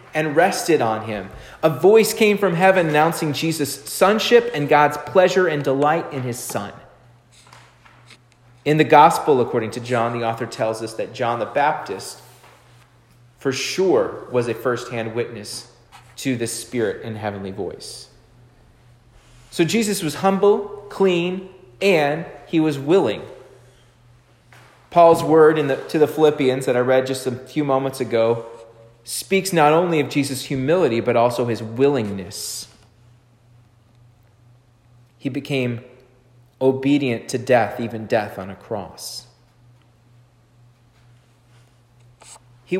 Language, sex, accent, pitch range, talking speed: English, male, American, 120-145 Hz, 125 wpm